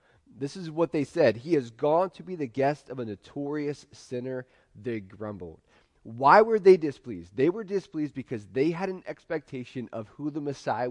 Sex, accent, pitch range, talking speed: male, American, 95-145 Hz, 185 wpm